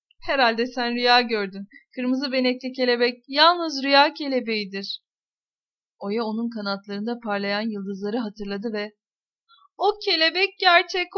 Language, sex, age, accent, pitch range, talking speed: Turkish, female, 30-49, native, 220-310 Hz, 105 wpm